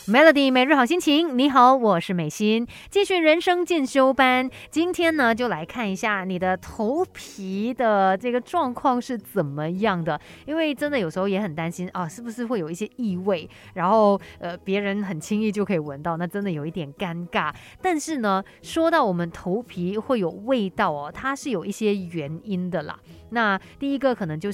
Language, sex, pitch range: Chinese, female, 180-240 Hz